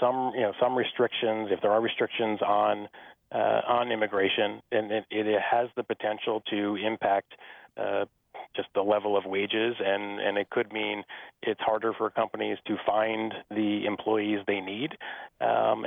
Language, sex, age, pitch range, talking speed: English, male, 30-49, 105-120 Hz, 165 wpm